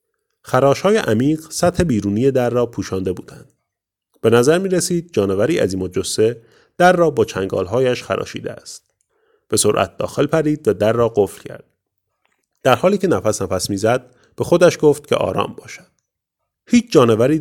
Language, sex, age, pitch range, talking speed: Persian, male, 30-49, 110-180 Hz, 150 wpm